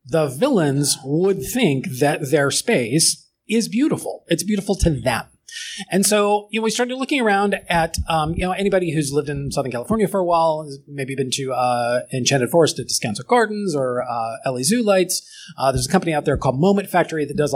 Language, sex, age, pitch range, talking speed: English, male, 30-49, 140-200 Hz, 205 wpm